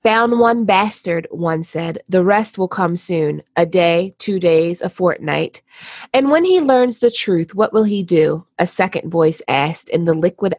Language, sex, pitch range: English, female, 170-225 Hz